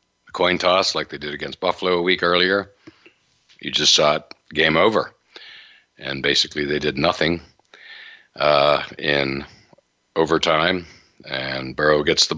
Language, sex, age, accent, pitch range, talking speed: English, male, 60-79, American, 70-85 Hz, 135 wpm